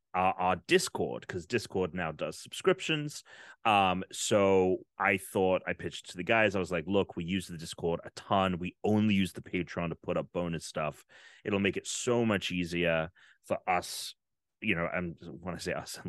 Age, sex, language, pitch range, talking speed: 30-49, male, English, 90-110 Hz, 195 wpm